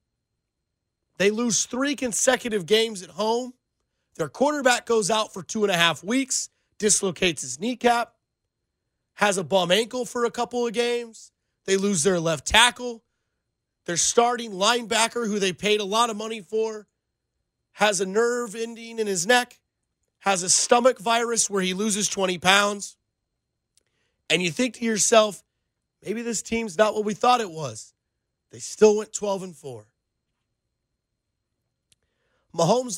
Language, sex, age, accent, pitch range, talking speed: English, male, 30-49, American, 195-240 Hz, 150 wpm